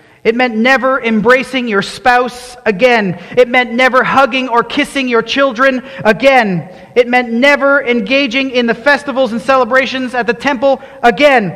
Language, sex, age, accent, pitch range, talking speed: English, male, 40-59, American, 180-255 Hz, 150 wpm